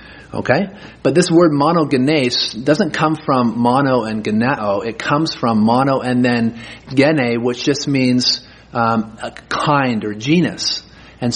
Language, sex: English, male